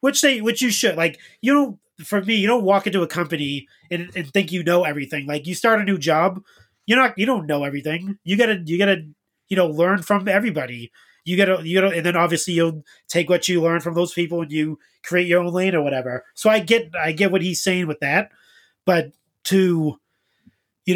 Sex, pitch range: male, 160-195 Hz